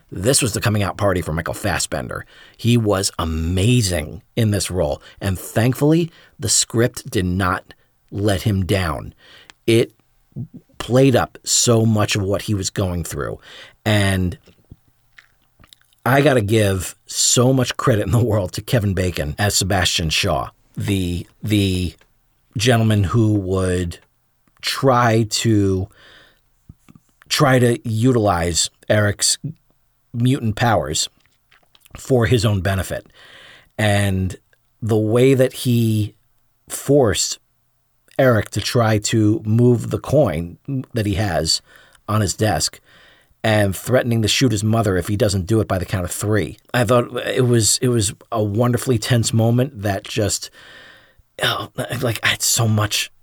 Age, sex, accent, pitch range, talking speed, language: 40-59, male, American, 100-120 Hz, 135 wpm, English